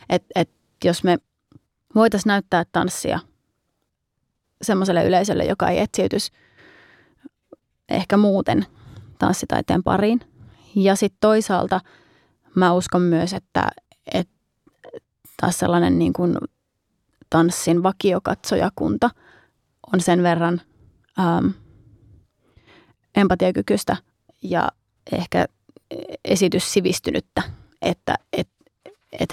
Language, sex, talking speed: Finnish, female, 80 wpm